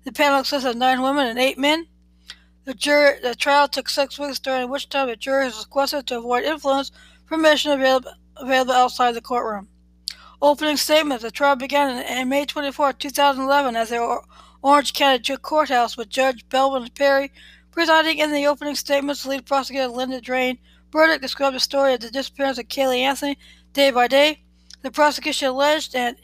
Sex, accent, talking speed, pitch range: female, American, 180 wpm, 245-285 Hz